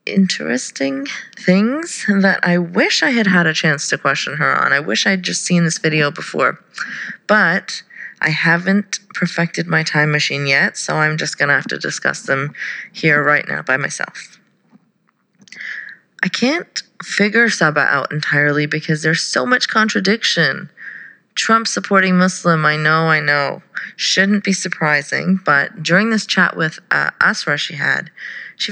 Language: English